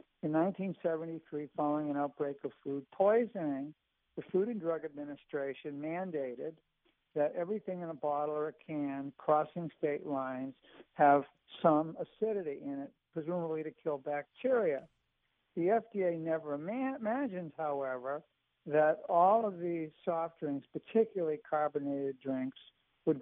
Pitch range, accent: 145-170 Hz, American